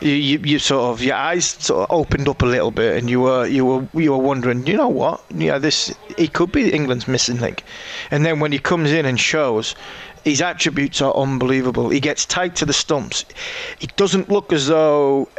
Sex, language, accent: male, English, British